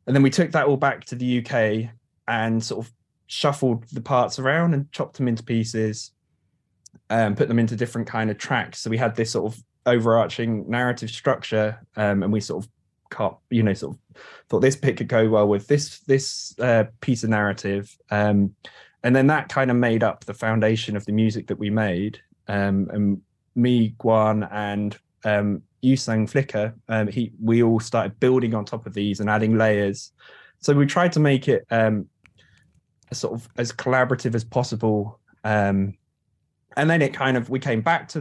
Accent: British